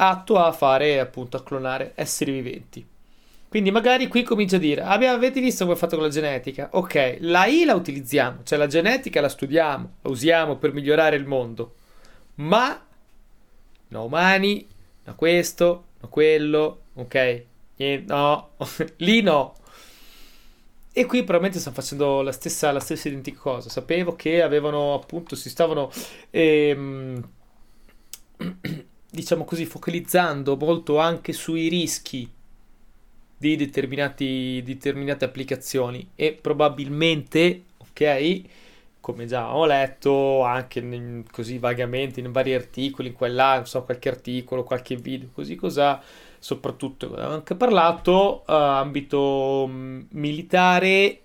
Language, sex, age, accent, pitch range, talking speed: Italian, male, 30-49, native, 130-170 Hz, 130 wpm